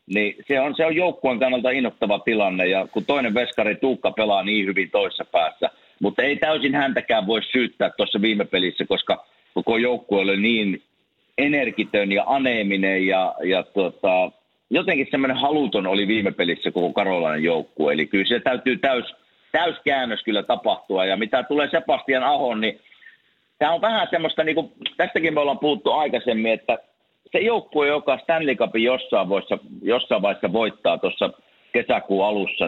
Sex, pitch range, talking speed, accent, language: male, 100-145 Hz, 155 wpm, native, Finnish